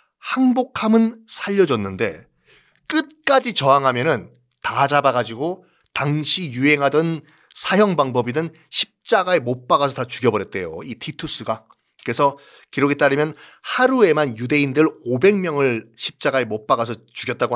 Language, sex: Korean, male